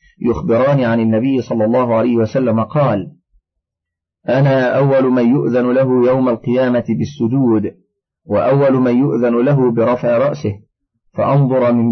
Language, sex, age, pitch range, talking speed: Arabic, male, 40-59, 115-145 Hz, 120 wpm